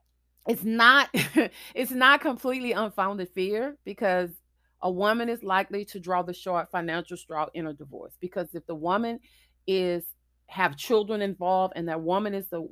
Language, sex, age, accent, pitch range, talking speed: English, female, 30-49, American, 165-205 Hz, 160 wpm